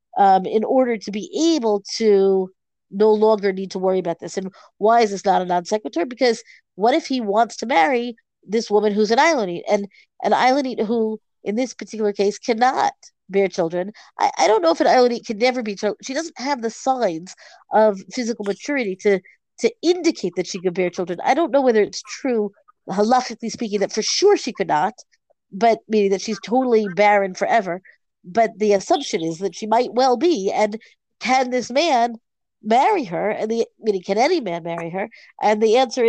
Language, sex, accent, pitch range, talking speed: English, female, American, 195-250 Hz, 200 wpm